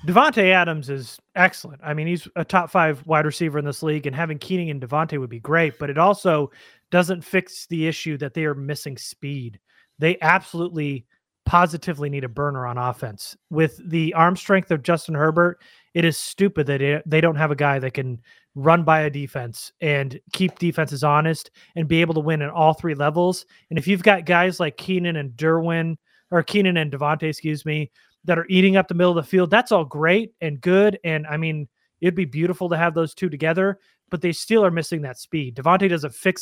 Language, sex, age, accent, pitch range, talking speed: English, male, 30-49, American, 150-180 Hz, 210 wpm